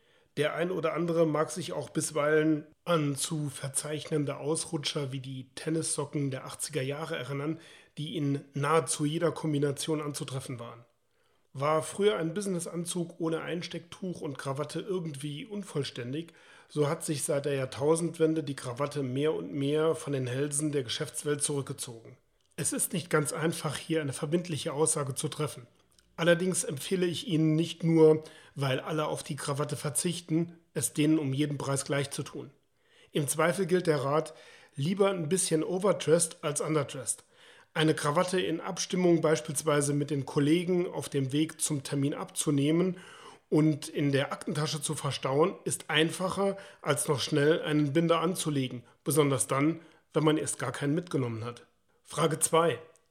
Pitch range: 145-165 Hz